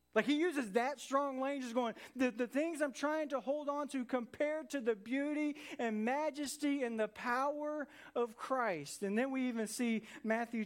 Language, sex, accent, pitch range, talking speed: English, male, American, 180-235 Hz, 185 wpm